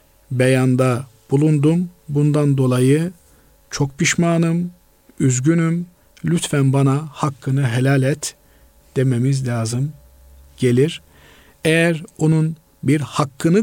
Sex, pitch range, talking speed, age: male, 125-155 Hz, 85 wpm, 50-69